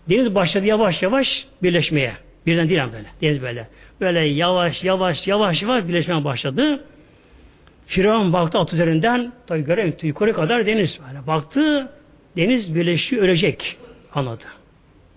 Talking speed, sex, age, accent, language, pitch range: 125 wpm, male, 60-79, native, Turkish, 160-250 Hz